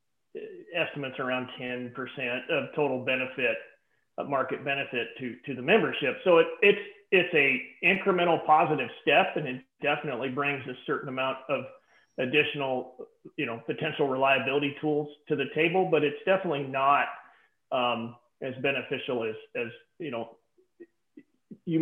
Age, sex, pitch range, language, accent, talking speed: 40-59, male, 140-170 Hz, English, American, 140 wpm